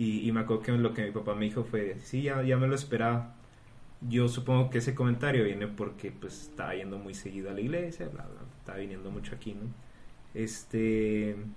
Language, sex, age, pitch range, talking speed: Spanish, male, 30-49, 110-130 Hz, 215 wpm